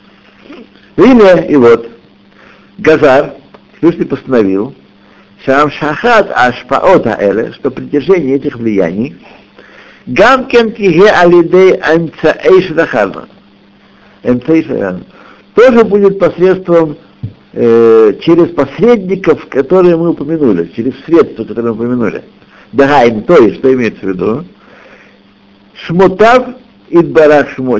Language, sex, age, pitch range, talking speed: Russian, male, 60-79, 130-190 Hz, 70 wpm